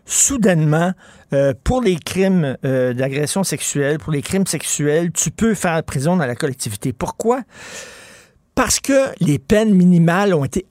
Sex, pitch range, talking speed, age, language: male, 145-185 Hz, 150 wpm, 50-69, French